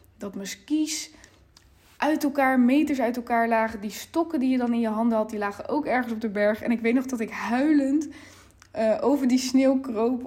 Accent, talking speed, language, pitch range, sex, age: Dutch, 215 wpm, Dutch, 210-255 Hz, female, 10-29